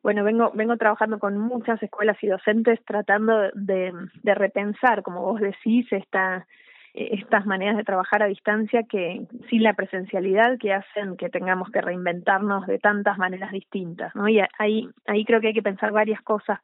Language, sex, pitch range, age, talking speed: Spanish, female, 190-220 Hz, 20-39, 175 wpm